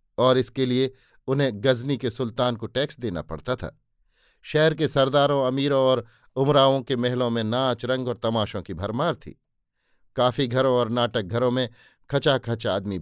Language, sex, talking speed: Hindi, male, 165 wpm